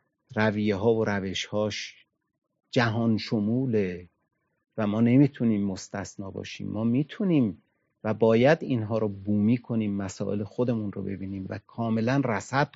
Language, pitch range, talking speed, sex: Persian, 105-150 Hz, 125 wpm, male